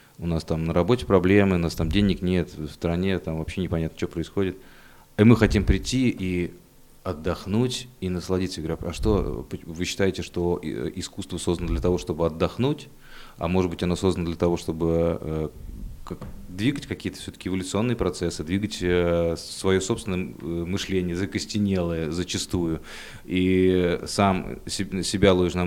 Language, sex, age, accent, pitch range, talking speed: Russian, male, 30-49, native, 85-100 Hz, 155 wpm